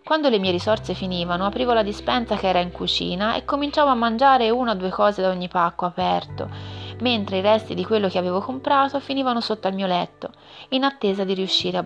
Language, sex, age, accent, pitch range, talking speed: Italian, female, 30-49, native, 165-225 Hz, 215 wpm